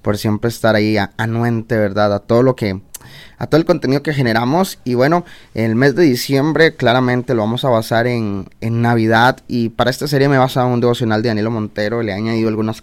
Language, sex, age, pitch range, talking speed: Spanish, male, 20-39, 115-130 Hz, 210 wpm